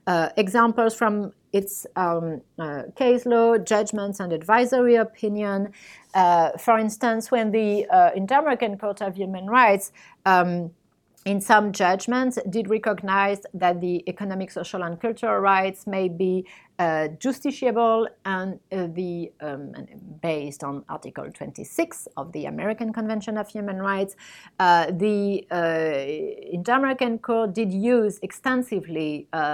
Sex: female